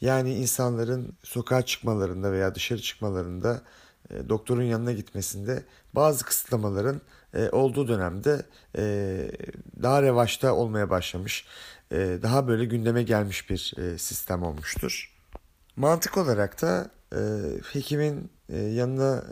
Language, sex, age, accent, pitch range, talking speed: Turkish, male, 40-59, native, 105-130 Hz, 95 wpm